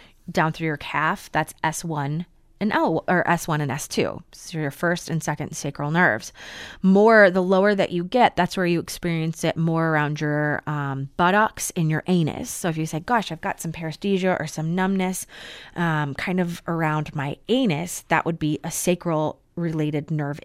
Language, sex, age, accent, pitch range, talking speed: English, female, 30-49, American, 155-195 Hz, 185 wpm